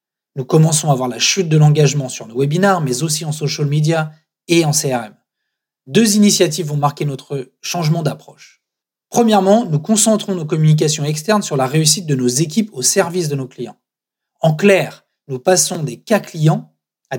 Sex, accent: male, French